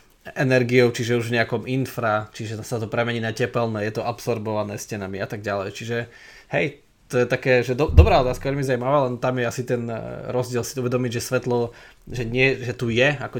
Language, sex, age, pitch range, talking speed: Slovak, male, 20-39, 110-125 Hz, 195 wpm